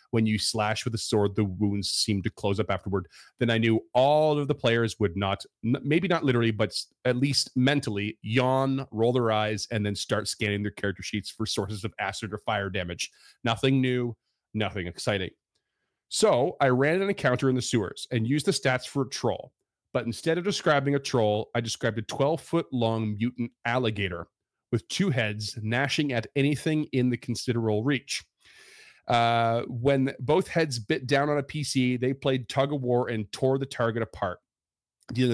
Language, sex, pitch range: English, male, 105-135 Hz